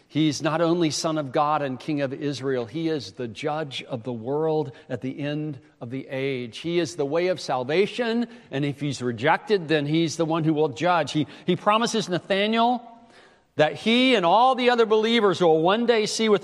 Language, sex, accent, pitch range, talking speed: English, male, American, 160-230 Hz, 205 wpm